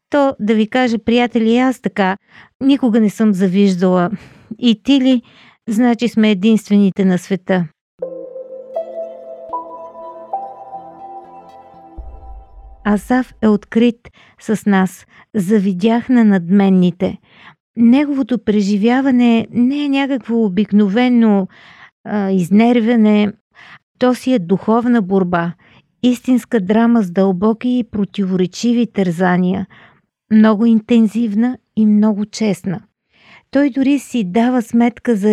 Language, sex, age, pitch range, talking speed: Bulgarian, female, 40-59, 190-245 Hz, 95 wpm